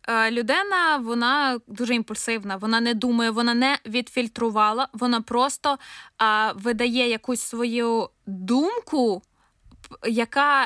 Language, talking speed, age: Ukrainian, 95 wpm, 20-39